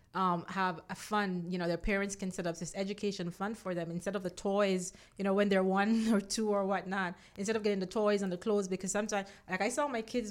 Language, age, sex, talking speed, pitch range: English, 30-49, female, 255 wpm, 180-215 Hz